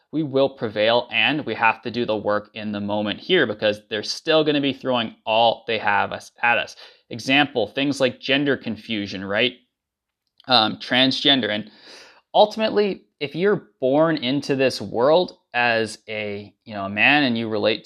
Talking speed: 175 wpm